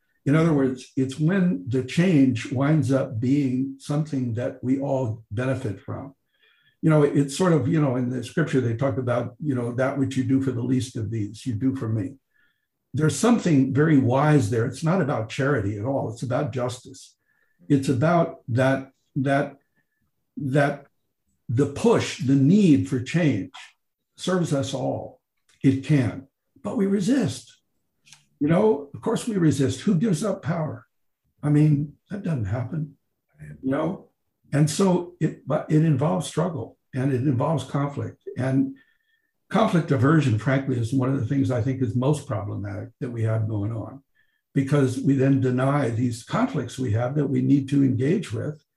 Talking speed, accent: 170 wpm, American